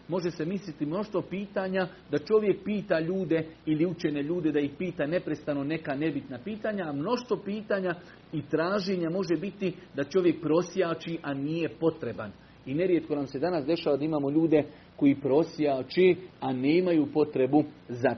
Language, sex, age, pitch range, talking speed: Croatian, male, 40-59, 135-165 Hz, 160 wpm